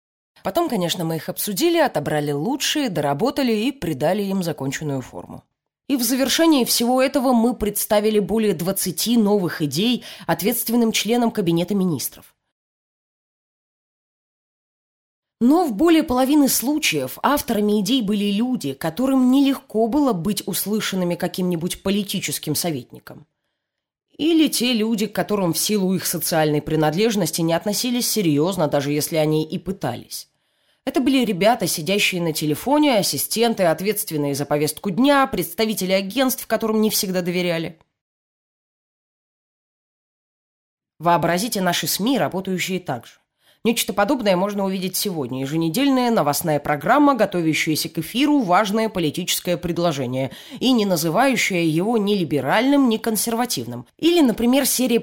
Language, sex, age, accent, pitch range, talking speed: Russian, female, 20-39, native, 165-235 Hz, 120 wpm